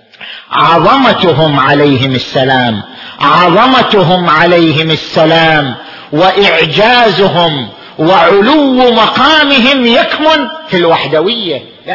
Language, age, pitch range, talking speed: Arabic, 50-69, 190-250 Hz, 65 wpm